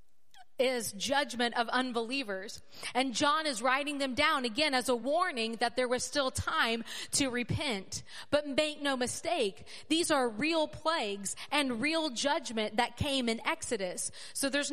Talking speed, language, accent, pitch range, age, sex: 155 wpm, English, American, 230-295 Hz, 40-59, female